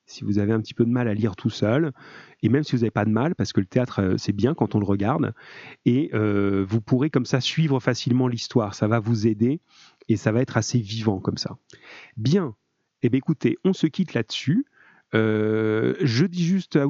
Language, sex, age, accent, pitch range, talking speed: French, male, 30-49, French, 110-140 Hz, 225 wpm